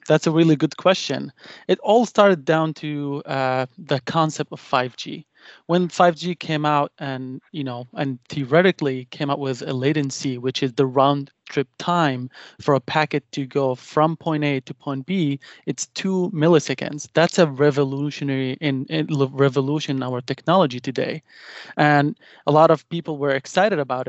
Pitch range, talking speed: 135-155 Hz, 165 wpm